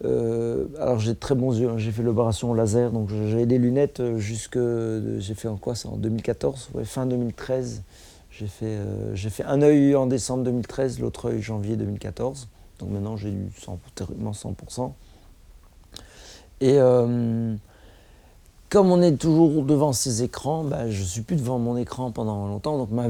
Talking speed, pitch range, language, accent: 180 wpm, 105-130 Hz, French, French